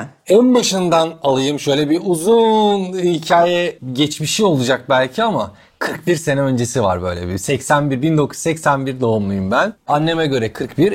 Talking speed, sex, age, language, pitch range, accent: 130 wpm, male, 40-59, Turkish, 115-160 Hz, native